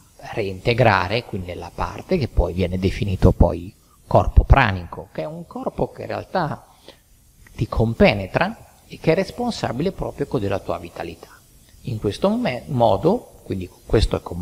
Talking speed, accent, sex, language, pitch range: 155 wpm, native, male, Italian, 90-135 Hz